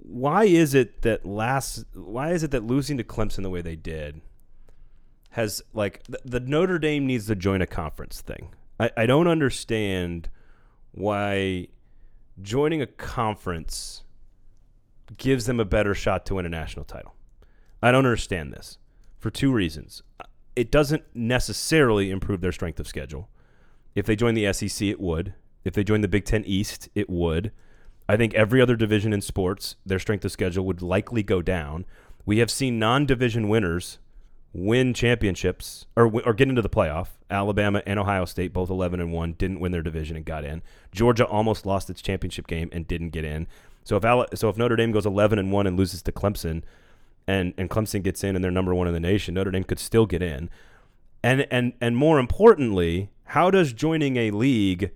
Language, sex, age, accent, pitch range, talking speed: English, male, 30-49, American, 90-120 Hz, 190 wpm